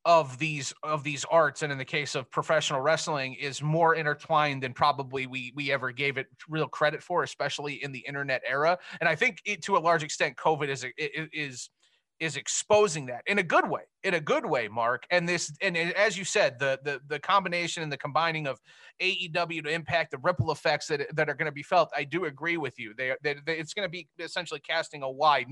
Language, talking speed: English, 225 wpm